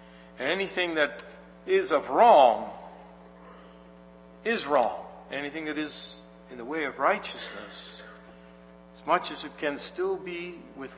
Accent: American